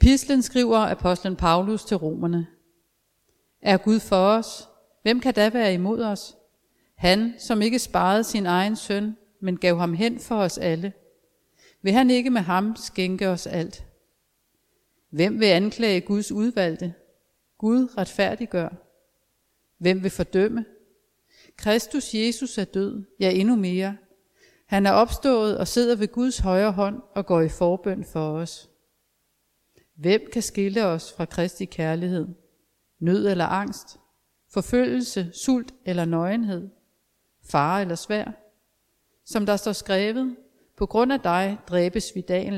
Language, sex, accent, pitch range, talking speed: Danish, female, native, 175-220 Hz, 140 wpm